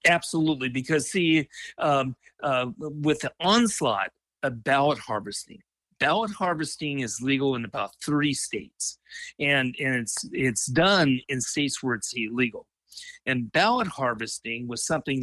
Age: 50-69